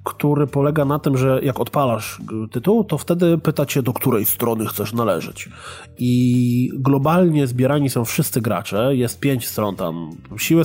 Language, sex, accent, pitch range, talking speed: Polish, male, native, 120-145 Hz, 150 wpm